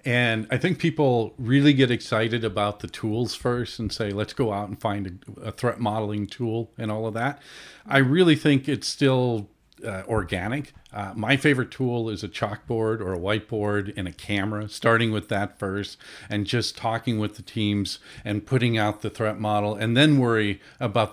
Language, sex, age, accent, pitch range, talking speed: English, male, 50-69, American, 105-135 Hz, 190 wpm